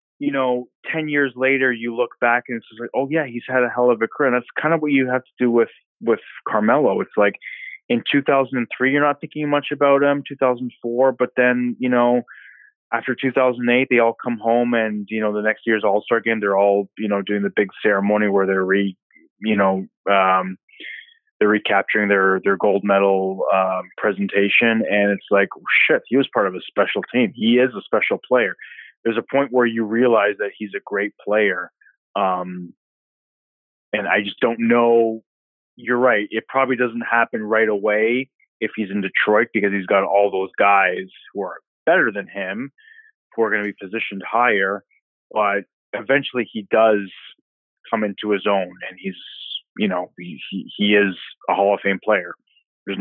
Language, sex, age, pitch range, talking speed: English, male, 20-39, 100-130 Hz, 190 wpm